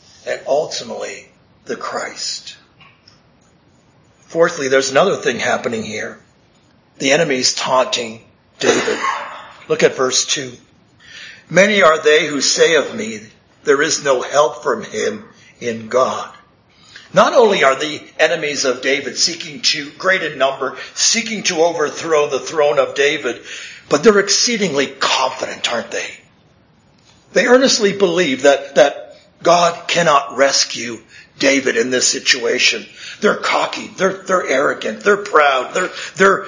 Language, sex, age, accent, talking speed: English, male, 50-69, American, 130 wpm